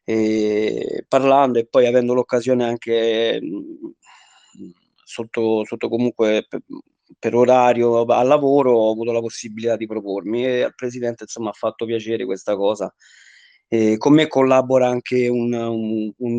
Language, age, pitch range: Italian, 20-39, 110-125 Hz